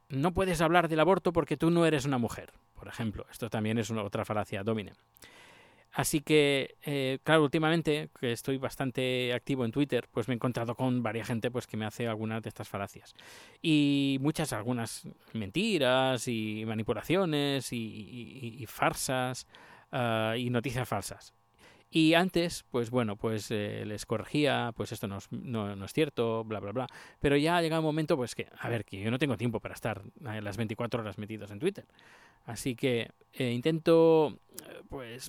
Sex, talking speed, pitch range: male, 180 wpm, 110-135 Hz